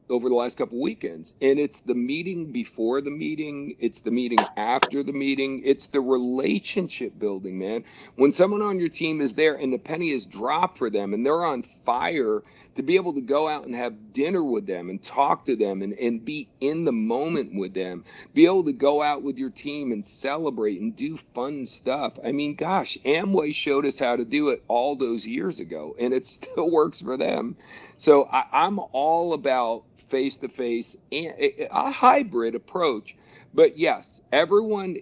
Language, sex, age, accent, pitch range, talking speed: English, male, 50-69, American, 125-165 Hz, 190 wpm